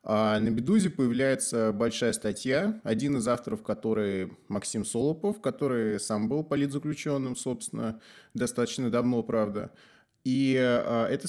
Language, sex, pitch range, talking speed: Russian, male, 115-145 Hz, 110 wpm